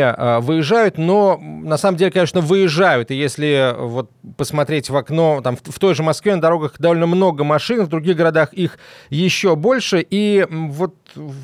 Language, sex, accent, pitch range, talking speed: Russian, male, native, 150-190 Hz, 165 wpm